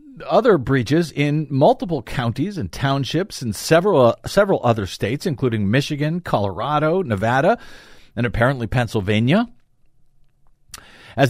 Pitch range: 130-185 Hz